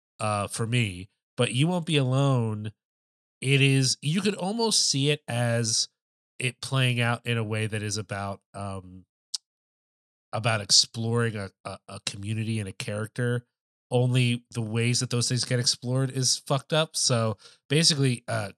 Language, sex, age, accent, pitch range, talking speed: English, male, 30-49, American, 110-130 Hz, 160 wpm